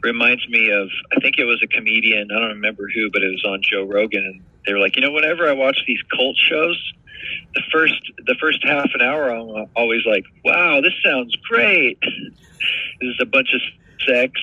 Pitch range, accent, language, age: 105-130 Hz, American, English, 40-59